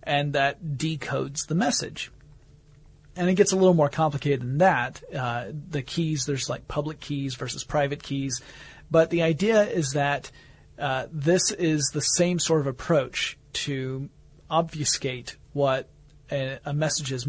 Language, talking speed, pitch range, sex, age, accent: English, 150 wpm, 135-160 Hz, male, 40-59, American